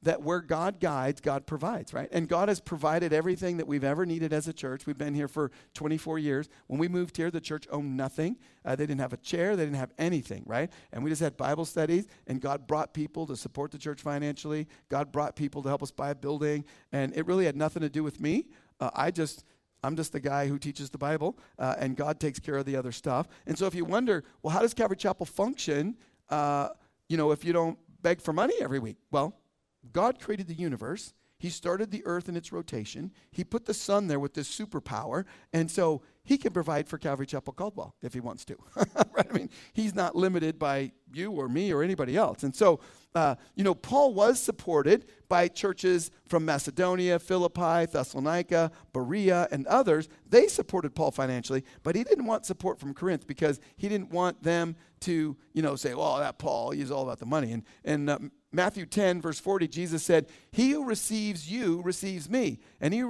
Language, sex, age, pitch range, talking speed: English, male, 50-69, 145-180 Hz, 215 wpm